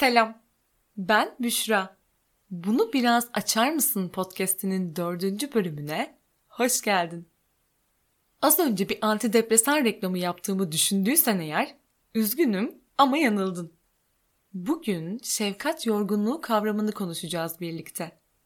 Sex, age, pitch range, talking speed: female, 10-29, 190-250 Hz, 95 wpm